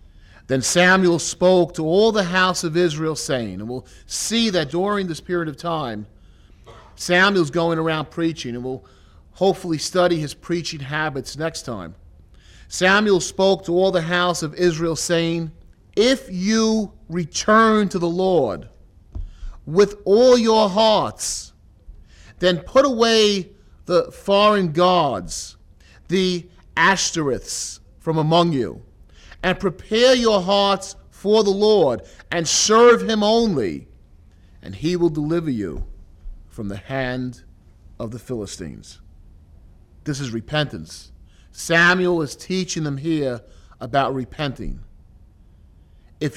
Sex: male